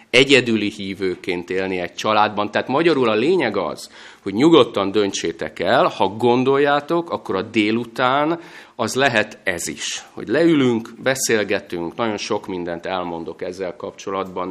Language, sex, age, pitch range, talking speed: Hungarian, male, 30-49, 95-130 Hz, 130 wpm